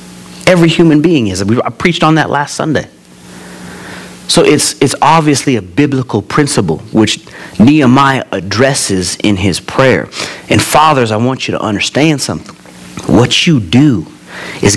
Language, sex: English, male